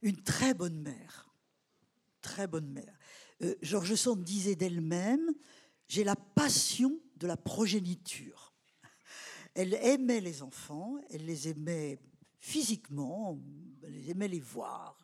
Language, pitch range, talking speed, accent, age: French, 170-235 Hz, 130 wpm, French, 50-69